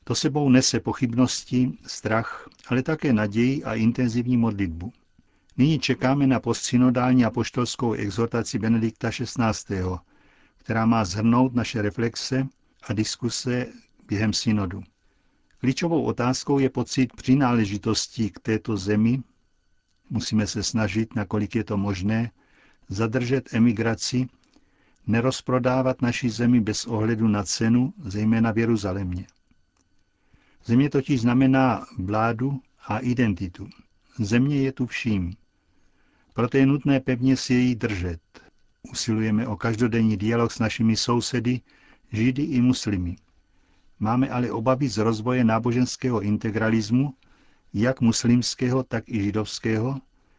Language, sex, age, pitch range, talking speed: Czech, male, 50-69, 110-125 Hz, 115 wpm